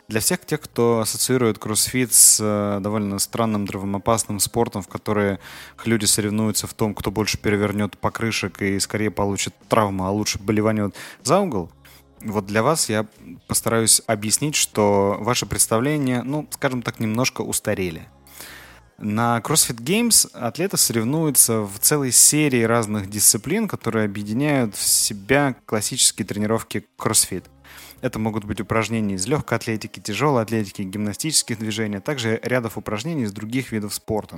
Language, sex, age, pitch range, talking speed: Russian, male, 20-39, 105-120 Hz, 140 wpm